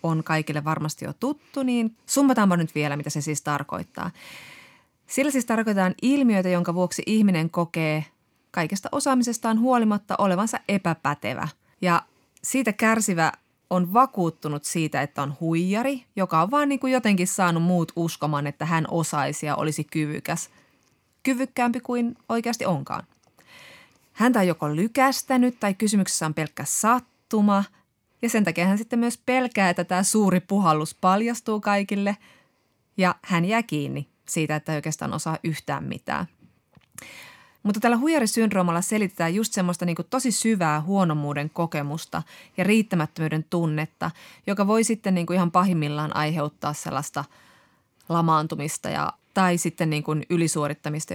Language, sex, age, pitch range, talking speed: Finnish, female, 30-49, 155-220 Hz, 130 wpm